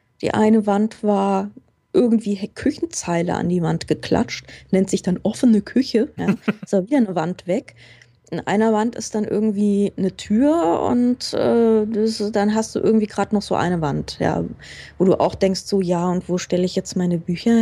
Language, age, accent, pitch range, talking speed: German, 20-39, German, 180-215 Hz, 180 wpm